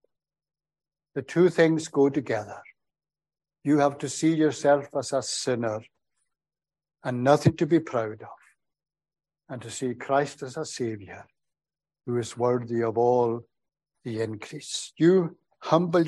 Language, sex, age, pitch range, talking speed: English, male, 60-79, 125-155 Hz, 130 wpm